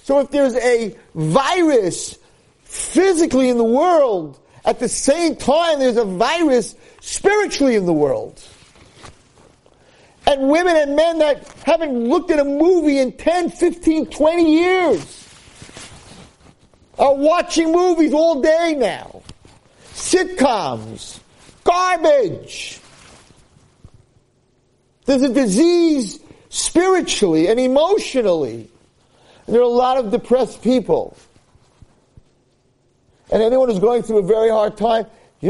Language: English